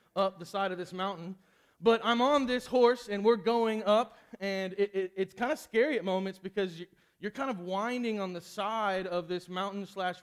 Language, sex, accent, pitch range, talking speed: English, male, American, 175-215 Hz, 215 wpm